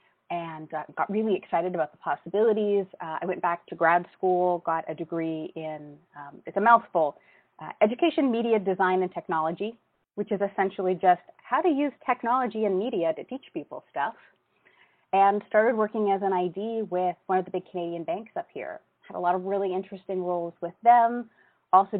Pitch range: 165-205 Hz